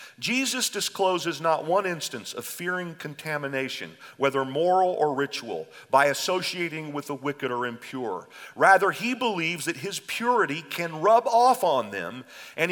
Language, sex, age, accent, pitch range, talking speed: English, male, 40-59, American, 155-230 Hz, 145 wpm